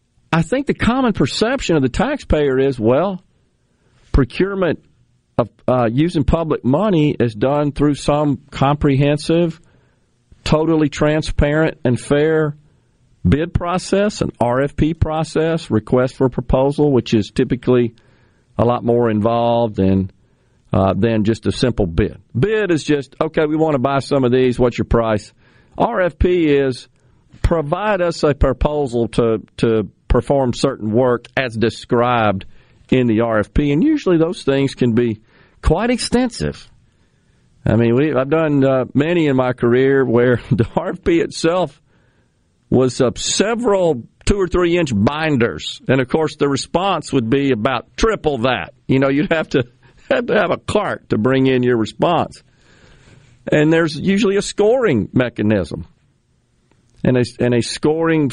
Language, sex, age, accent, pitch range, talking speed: English, male, 50-69, American, 120-160 Hz, 145 wpm